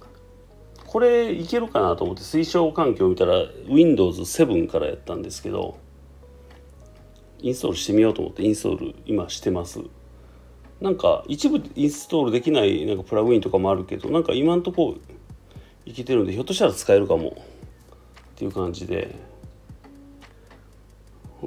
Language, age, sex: Japanese, 40-59, male